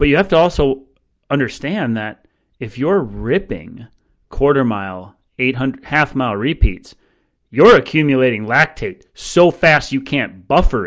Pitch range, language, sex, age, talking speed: 115-140 Hz, English, male, 30-49, 125 wpm